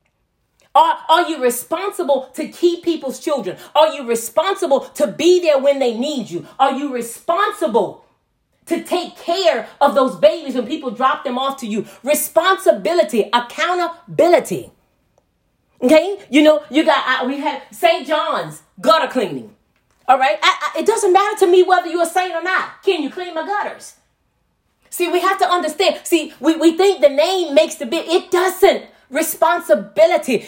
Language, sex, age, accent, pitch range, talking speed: English, female, 40-59, American, 265-345 Hz, 160 wpm